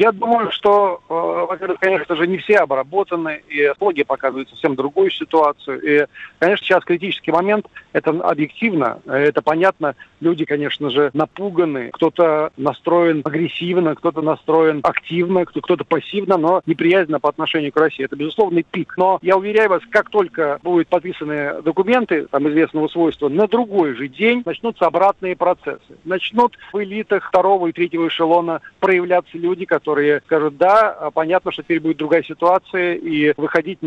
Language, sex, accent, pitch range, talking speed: Russian, male, native, 155-190 Hz, 145 wpm